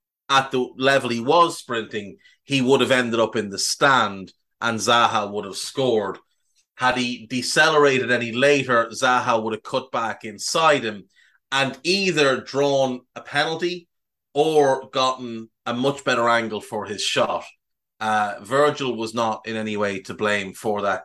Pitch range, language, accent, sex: 105-135 Hz, English, Irish, male